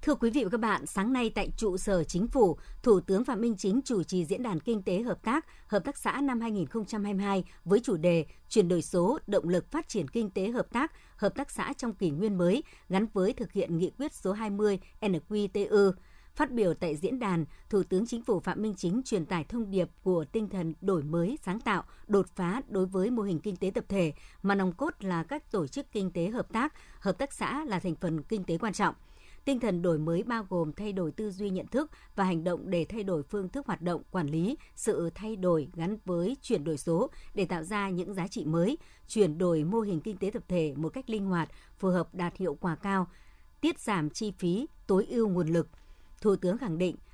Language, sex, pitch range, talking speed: Vietnamese, male, 175-220 Hz, 235 wpm